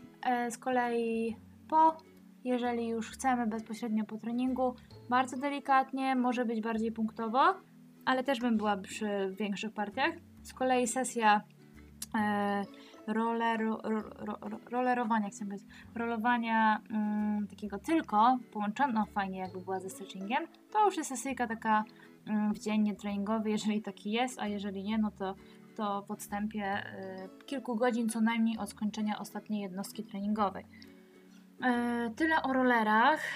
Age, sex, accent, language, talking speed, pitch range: 10-29, female, native, Polish, 135 wpm, 210-255 Hz